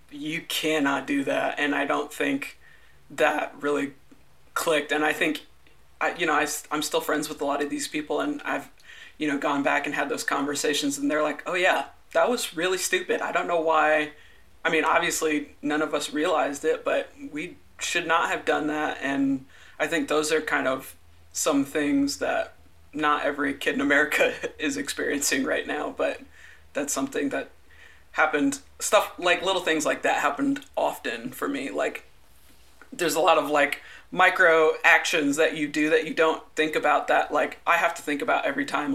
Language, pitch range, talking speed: English, 145-185 Hz, 190 wpm